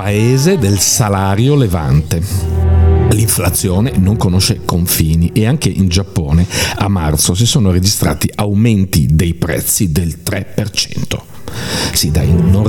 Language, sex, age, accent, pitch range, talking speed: Italian, male, 50-69, native, 95-125 Hz, 120 wpm